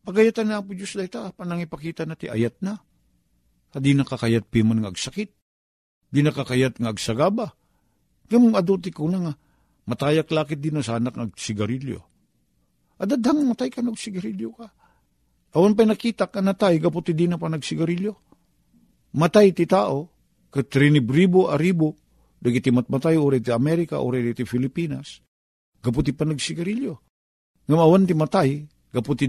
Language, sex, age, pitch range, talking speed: Filipino, male, 50-69, 110-170 Hz, 130 wpm